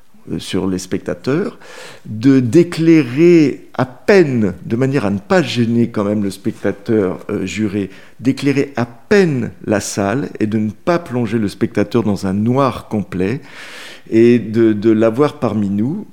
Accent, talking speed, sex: French, 155 wpm, male